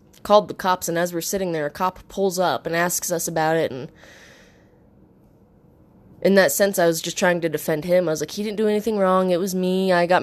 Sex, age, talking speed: female, 20-39, 240 wpm